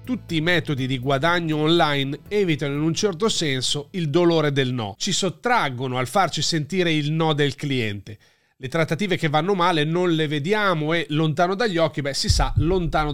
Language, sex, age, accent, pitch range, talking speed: Italian, male, 30-49, native, 140-180 Hz, 185 wpm